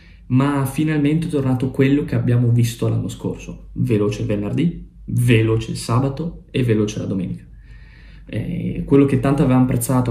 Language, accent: Italian, native